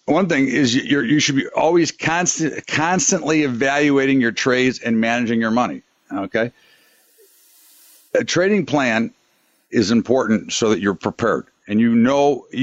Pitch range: 120-150 Hz